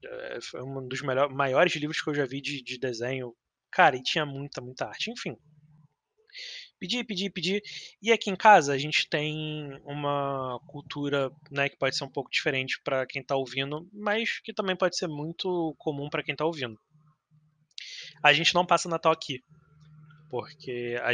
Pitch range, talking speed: 135-175 Hz, 175 wpm